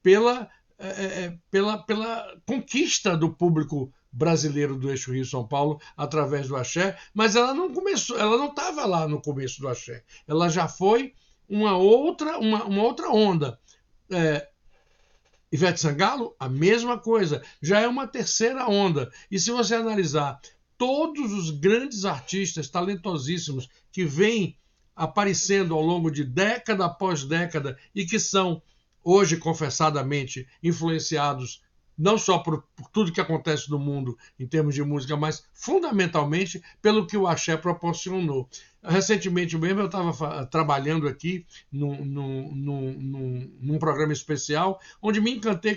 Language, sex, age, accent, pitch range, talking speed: Portuguese, male, 60-79, Brazilian, 150-205 Hz, 125 wpm